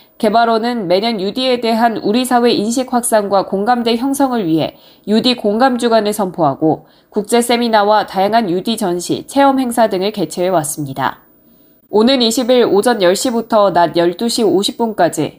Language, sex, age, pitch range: Korean, female, 20-39, 185-240 Hz